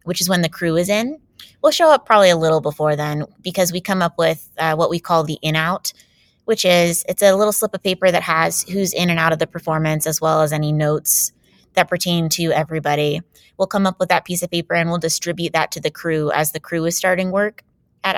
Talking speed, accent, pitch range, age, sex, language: 245 wpm, American, 160-190 Hz, 20-39, female, English